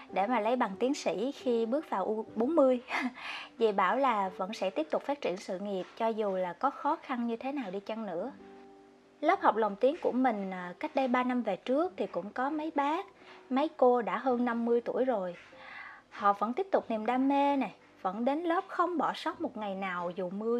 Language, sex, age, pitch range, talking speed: Vietnamese, female, 20-39, 205-280 Hz, 225 wpm